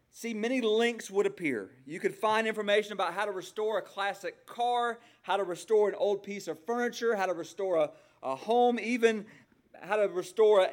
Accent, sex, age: American, male, 40-59